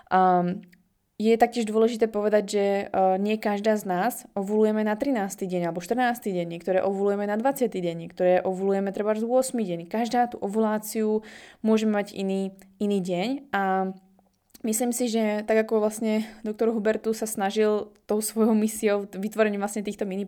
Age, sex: 20-39, female